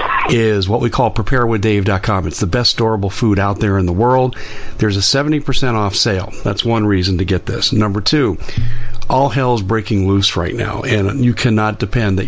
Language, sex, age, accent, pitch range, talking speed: English, male, 50-69, American, 100-120 Hz, 190 wpm